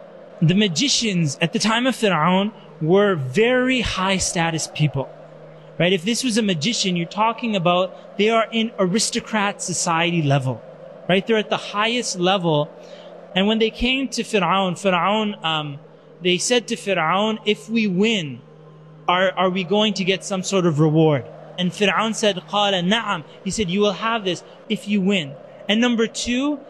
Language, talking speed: English, 170 wpm